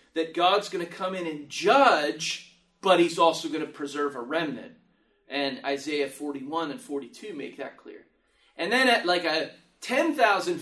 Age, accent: 30-49, American